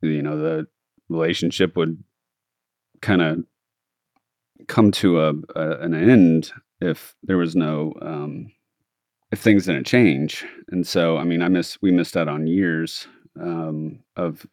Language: English